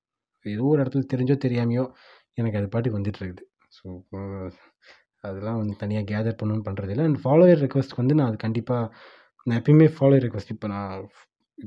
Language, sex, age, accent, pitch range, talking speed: Tamil, male, 20-39, native, 105-135 Hz, 160 wpm